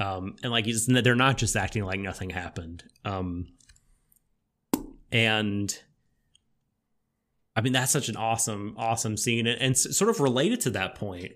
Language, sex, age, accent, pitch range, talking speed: English, male, 30-49, American, 100-125 Hz, 150 wpm